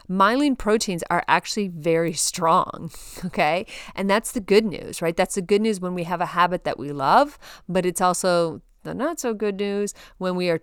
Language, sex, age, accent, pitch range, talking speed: English, female, 30-49, American, 170-215 Hz, 205 wpm